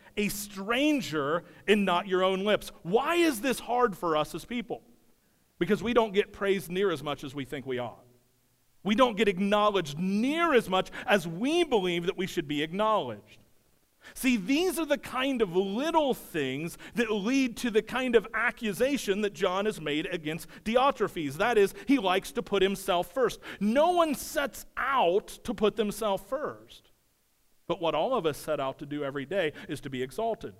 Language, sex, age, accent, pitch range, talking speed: English, male, 40-59, American, 150-220 Hz, 185 wpm